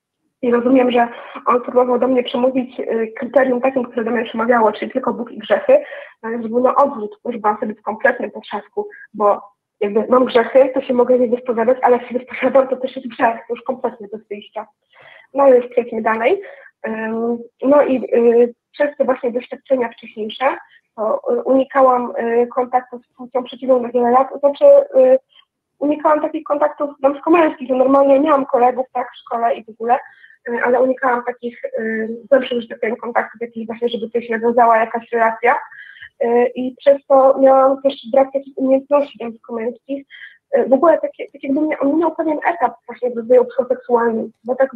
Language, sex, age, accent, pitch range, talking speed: Polish, female, 20-39, native, 235-270 Hz, 180 wpm